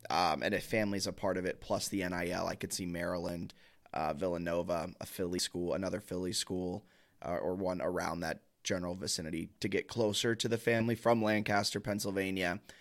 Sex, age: male, 20-39